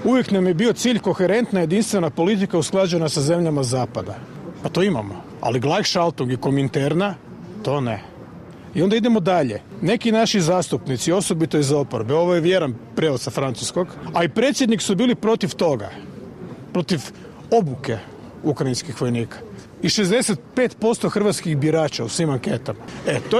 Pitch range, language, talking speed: 150-220 Hz, Croatian, 150 wpm